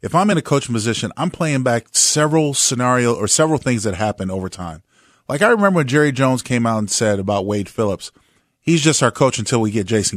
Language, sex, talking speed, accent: English, male, 230 wpm, American